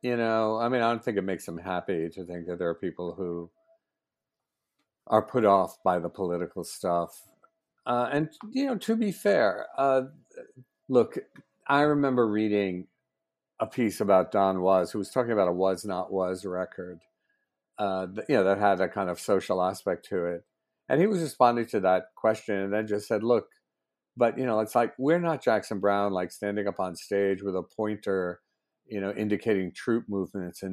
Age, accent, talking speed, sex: 50-69, American, 190 wpm, male